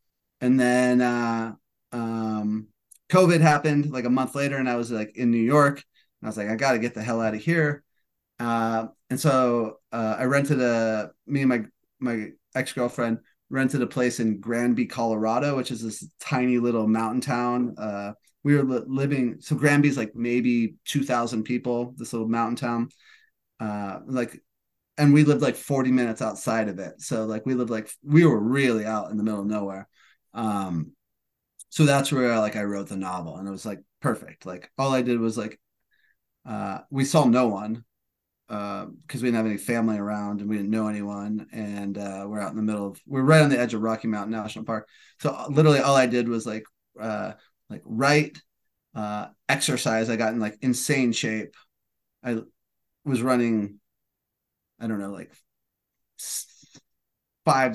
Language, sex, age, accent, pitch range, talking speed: English, male, 30-49, American, 110-130 Hz, 185 wpm